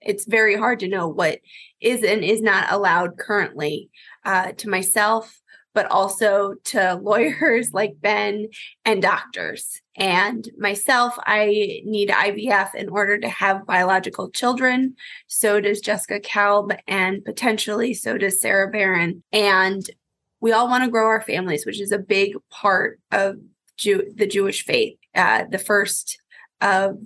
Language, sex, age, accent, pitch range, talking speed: English, female, 20-39, American, 200-225 Hz, 145 wpm